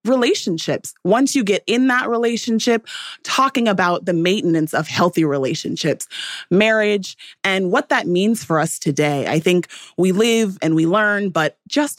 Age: 30-49